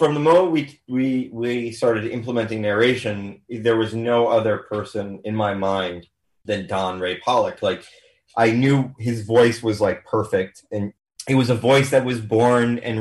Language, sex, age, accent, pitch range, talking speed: English, male, 30-49, American, 105-125 Hz, 175 wpm